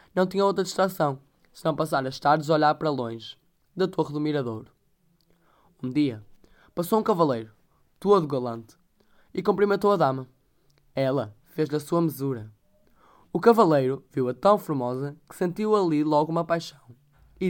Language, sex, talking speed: Portuguese, male, 155 wpm